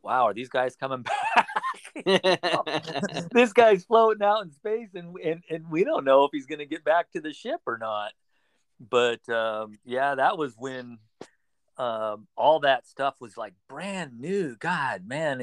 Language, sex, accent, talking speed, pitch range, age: English, male, American, 170 wpm, 105-150 Hz, 40-59